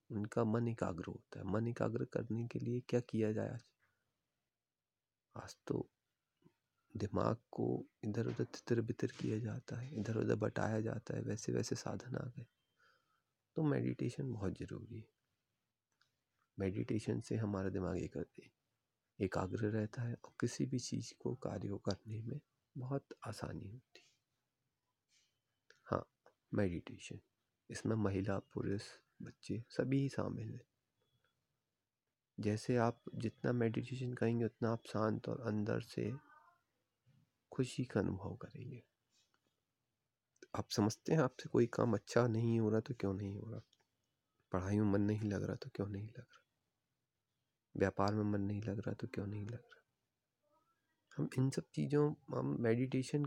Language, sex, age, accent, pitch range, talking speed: Hindi, male, 30-49, native, 105-125 Hz, 140 wpm